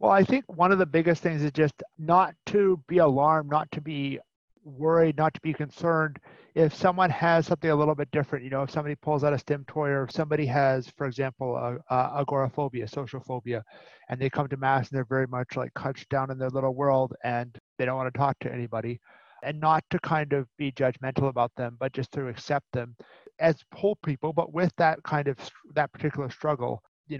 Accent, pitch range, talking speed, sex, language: American, 130-155 Hz, 215 wpm, male, English